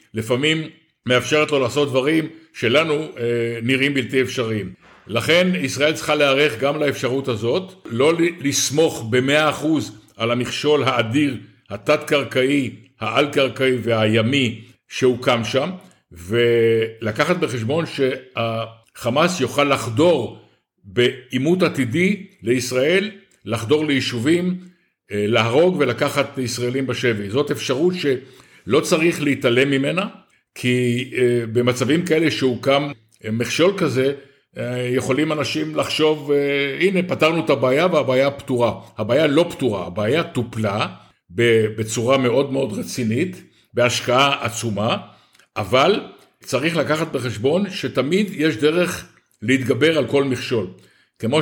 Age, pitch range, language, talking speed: 60-79, 120-150 Hz, Hebrew, 100 wpm